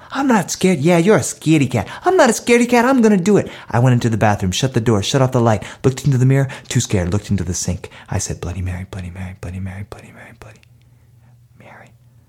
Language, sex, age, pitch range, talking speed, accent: English, male, 30-49, 105-160 Hz, 255 wpm, American